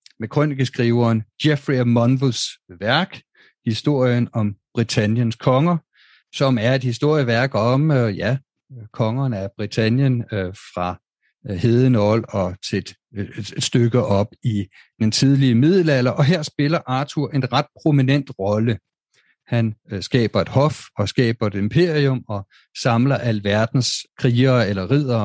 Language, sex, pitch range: Danish, male, 110-140 Hz